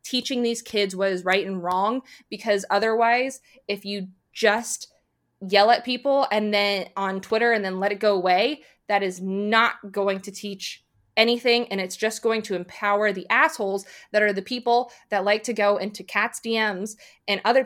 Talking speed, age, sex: 185 wpm, 20-39, female